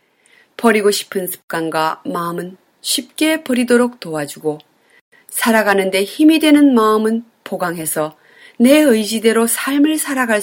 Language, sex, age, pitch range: Korean, female, 30-49, 185-270 Hz